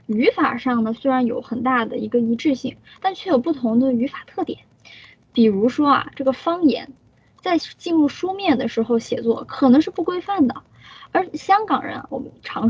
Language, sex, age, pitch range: Chinese, female, 10-29, 235-305 Hz